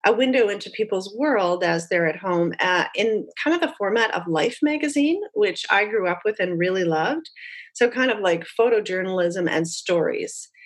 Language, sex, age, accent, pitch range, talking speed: English, female, 40-59, American, 175-245 Hz, 185 wpm